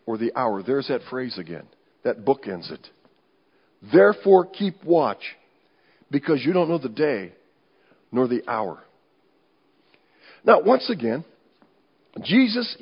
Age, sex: 50-69, male